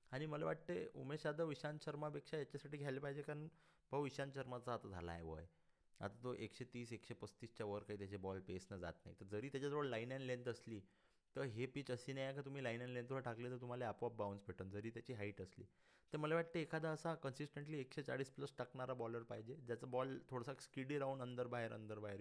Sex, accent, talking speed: male, native, 225 wpm